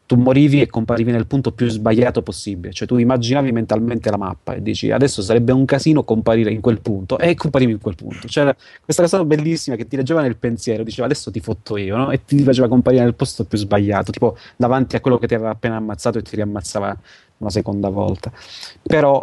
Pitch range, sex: 105-130 Hz, male